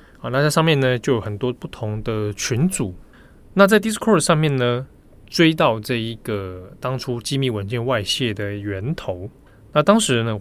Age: 20-39